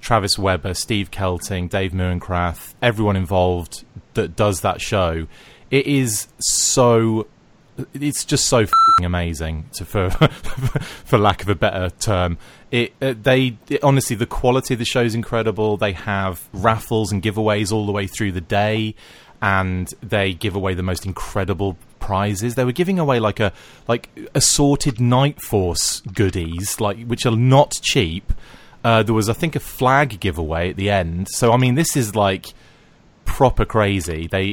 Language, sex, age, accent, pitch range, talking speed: English, male, 30-49, British, 95-120 Hz, 165 wpm